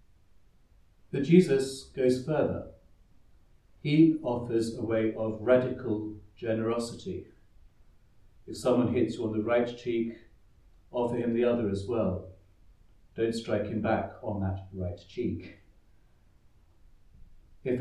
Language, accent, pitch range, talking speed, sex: English, British, 100-120 Hz, 115 wpm, male